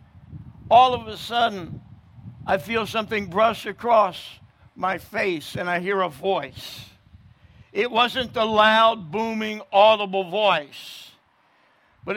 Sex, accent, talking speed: male, American, 120 wpm